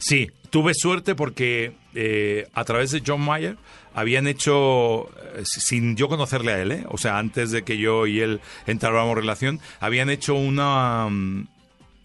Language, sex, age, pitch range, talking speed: Spanish, male, 40-59, 110-140 Hz, 170 wpm